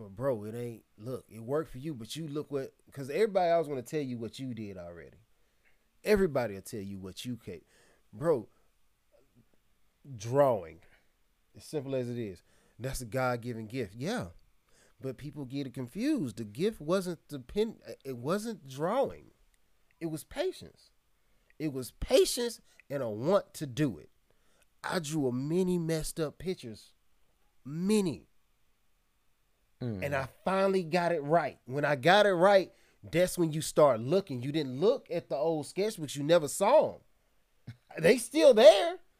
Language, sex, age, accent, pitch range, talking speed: English, male, 30-49, American, 130-185 Hz, 165 wpm